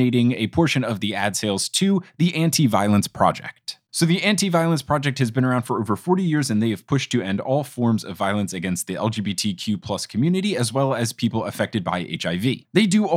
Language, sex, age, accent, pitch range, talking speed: English, male, 20-39, American, 125-180 Hz, 205 wpm